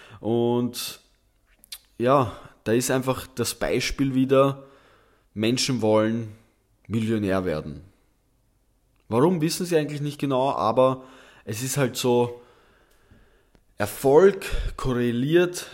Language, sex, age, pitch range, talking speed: German, male, 20-39, 100-130 Hz, 95 wpm